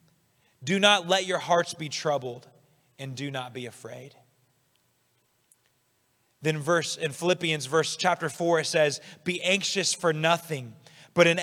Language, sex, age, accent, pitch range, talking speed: English, male, 20-39, American, 130-175 Hz, 140 wpm